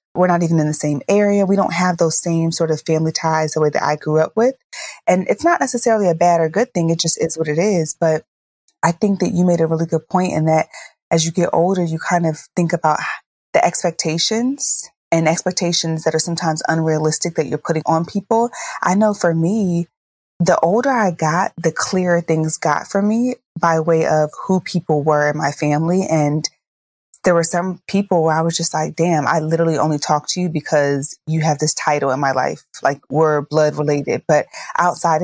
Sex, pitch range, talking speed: female, 155-180 Hz, 215 wpm